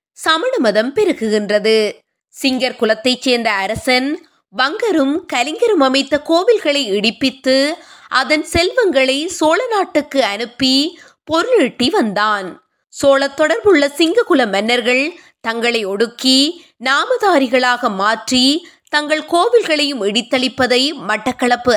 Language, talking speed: Tamil, 80 wpm